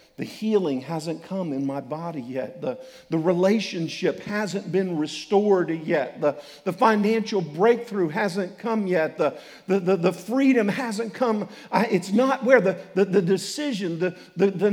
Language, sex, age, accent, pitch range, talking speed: English, male, 50-69, American, 160-220 Hz, 165 wpm